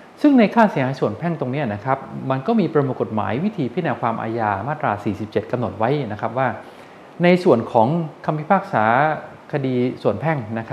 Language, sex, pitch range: Thai, male, 115-160 Hz